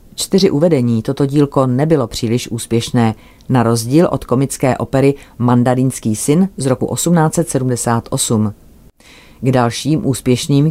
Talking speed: 110 wpm